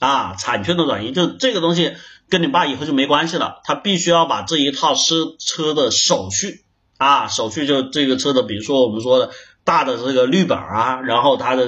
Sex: male